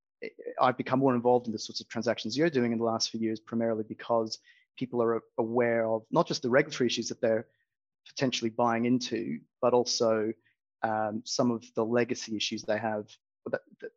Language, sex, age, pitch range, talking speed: English, male, 30-49, 110-125 Hz, 185 wpm